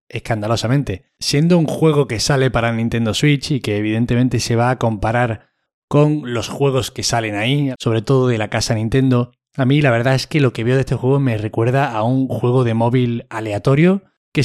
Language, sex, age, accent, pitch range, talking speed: Spanish, male, 20-39, Spanish, 115-140 Hz, 205 wpm